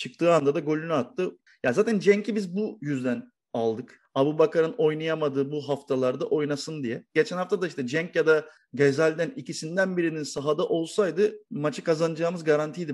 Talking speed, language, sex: 160 wpm, Turkish, male